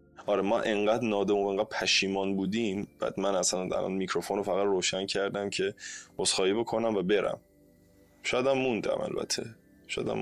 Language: Persian